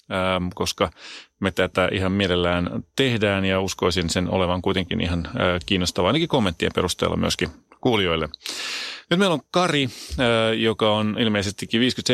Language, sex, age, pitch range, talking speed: Finnish, male, 30-49, 95-115 Hz, 125 wpm